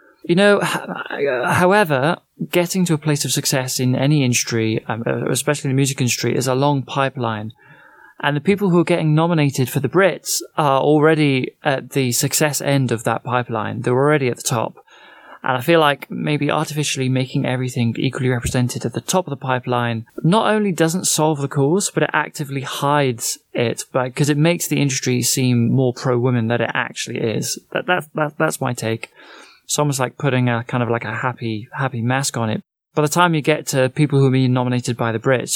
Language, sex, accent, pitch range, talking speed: English, male, British, 120-155 Hz, 195 wpm